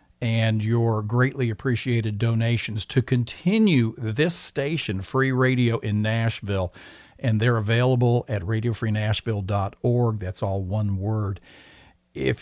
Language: English